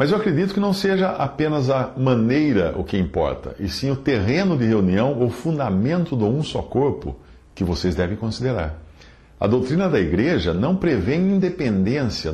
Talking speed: 170 wpm